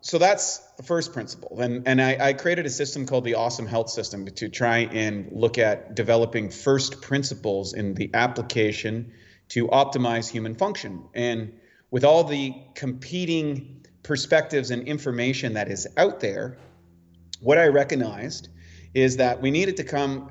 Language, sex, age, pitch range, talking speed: English, male, 30-49, 115-140 Hz, 155 wpm